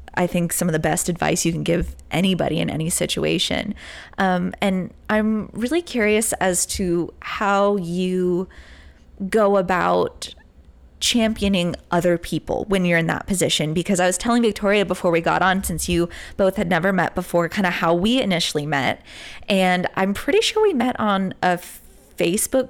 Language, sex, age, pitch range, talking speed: English, female, 20-39, 175-205 Hz, 170 wpm